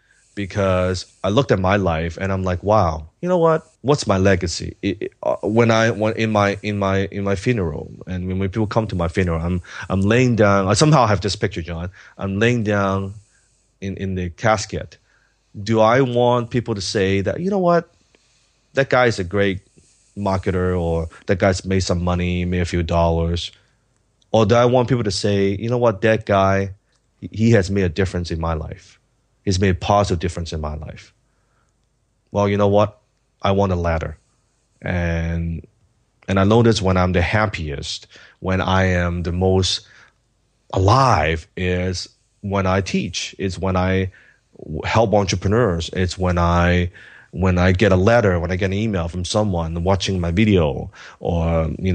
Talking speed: 185 wpm